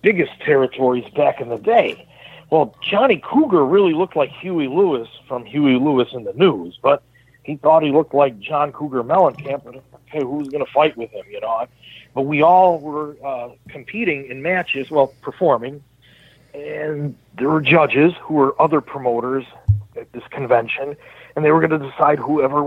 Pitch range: 130-160 Hz